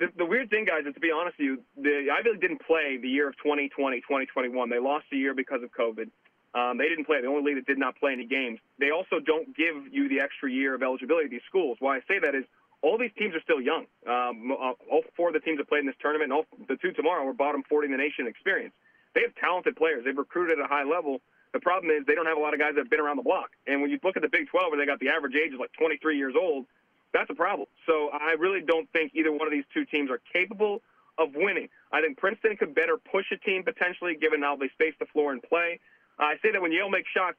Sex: male